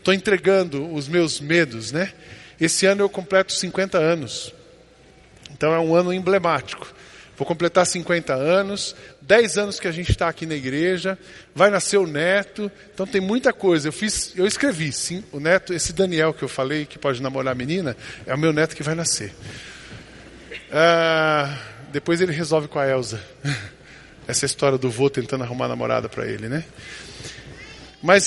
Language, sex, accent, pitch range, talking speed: Portuguese, male, Brazilian, 150-195 Hz, 175 wpm